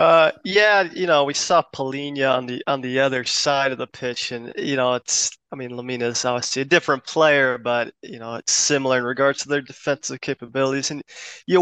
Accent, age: American, 20-39